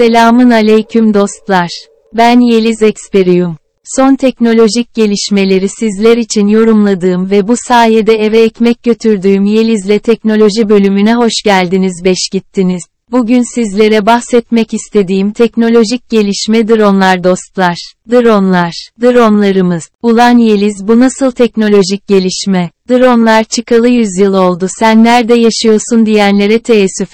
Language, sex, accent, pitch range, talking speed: Turkish, female, native, 195-235 Hz, 110 wpm